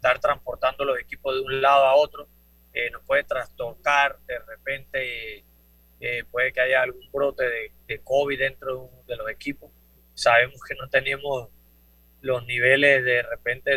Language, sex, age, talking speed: Spanish, male, 30-49, 165 wpm